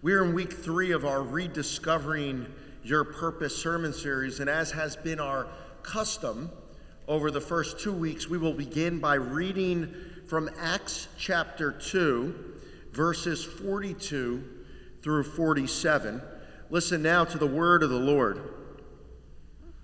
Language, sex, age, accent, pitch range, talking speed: English, male, 50-69, American, 125-160 Hz, 130 wpm